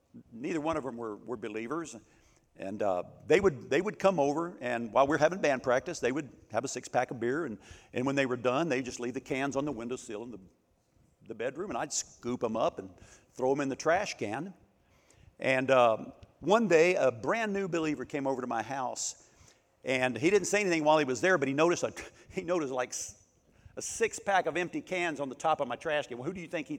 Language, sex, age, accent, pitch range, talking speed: English, male, 50-69, American, 115-150 Hz, 235 wpm